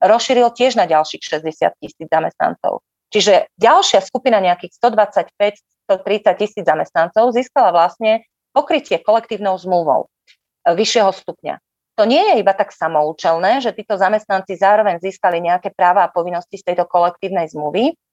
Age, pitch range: 30-49, 180-235 Hz